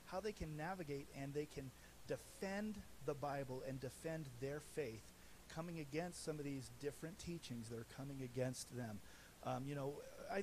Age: 40-59